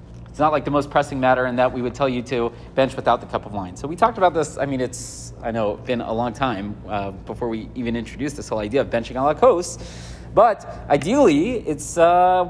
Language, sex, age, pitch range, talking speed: English, male, 30-49, 120-170 Hz, 250 wpm